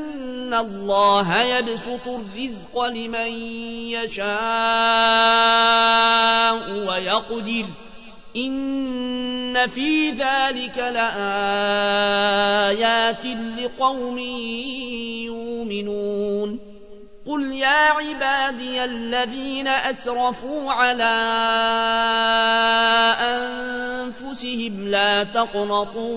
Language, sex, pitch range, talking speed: Arabic, male, 225-250 Hz, 50 wpm